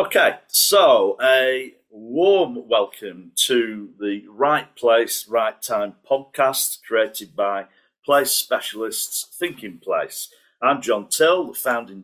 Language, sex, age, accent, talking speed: English, male, 50-69, British, 115 wpm